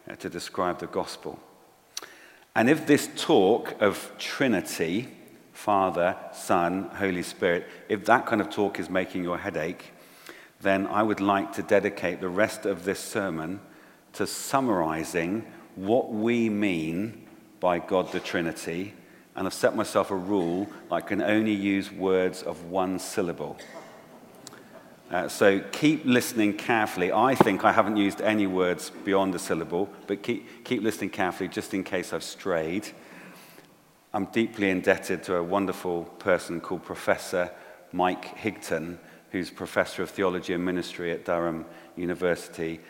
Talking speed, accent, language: 145 wpm, British, English